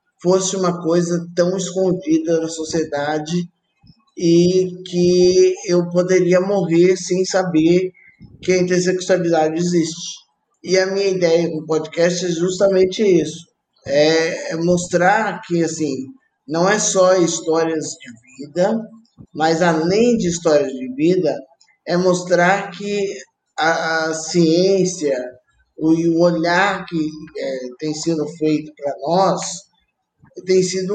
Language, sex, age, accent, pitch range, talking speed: Portuguese, male, 20-39, Brazilian, 155-185 Hz, 120 wpm